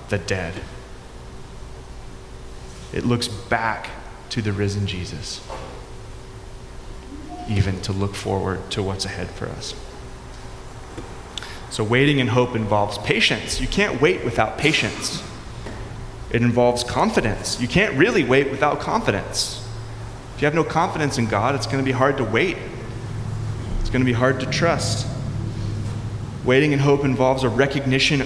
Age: 30-49